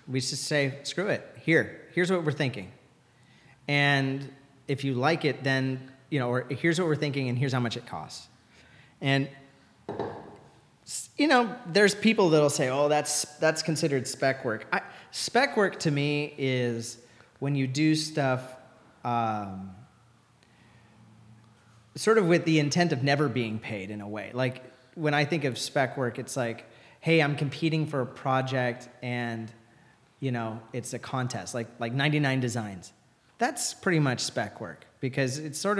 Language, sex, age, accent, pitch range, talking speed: English, male, 30-49, American, 120-150 Hz, 165 wpm